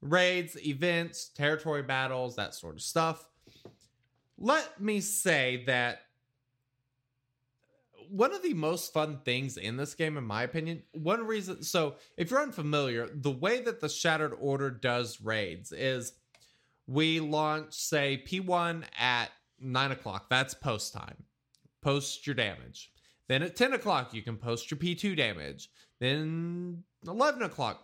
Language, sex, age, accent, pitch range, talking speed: English, male, 20-39, American, 130-200 Hz, 140 wpm